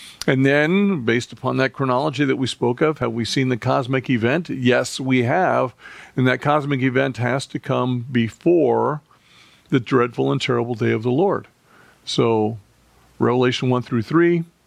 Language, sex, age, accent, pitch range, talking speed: English, male, 50-69, American, 115-140 Hz, 165 wpm